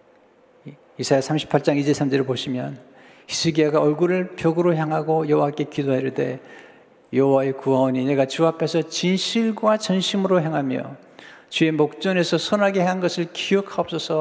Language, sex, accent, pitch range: Korean, male, native, 140-175 Hz